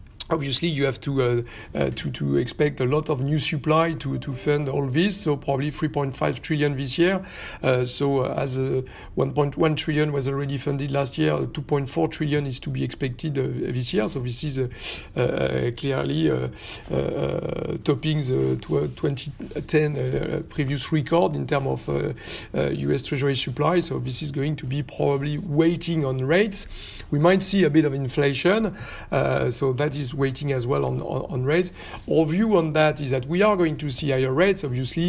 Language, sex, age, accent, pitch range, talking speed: French, male, 50-69, French, 130-155 Hz, 185 wpm